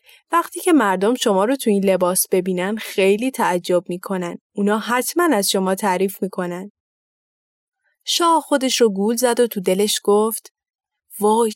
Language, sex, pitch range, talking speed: Persian, female, 195-285 Hz, 145 wpm